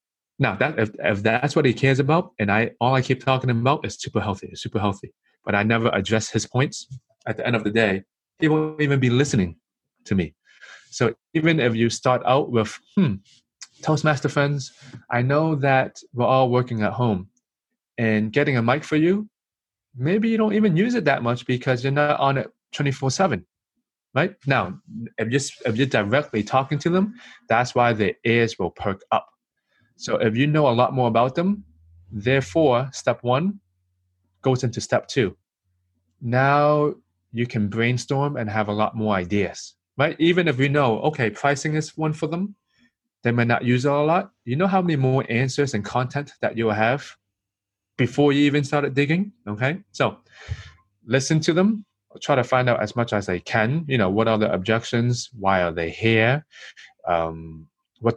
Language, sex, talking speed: English, male, 185 wpm